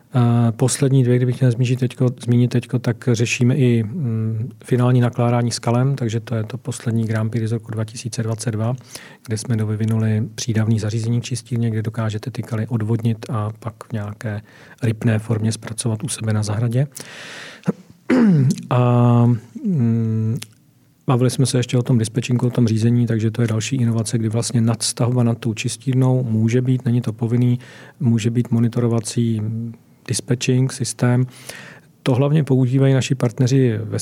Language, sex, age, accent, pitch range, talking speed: Czech, male, 40-59, native, 115-130 Hz, 145 wpm